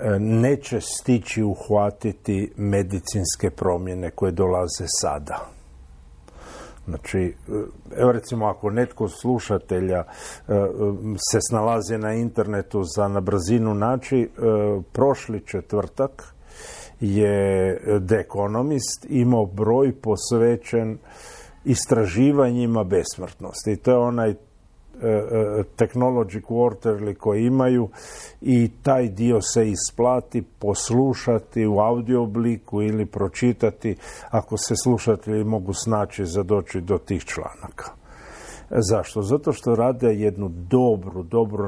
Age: 50-69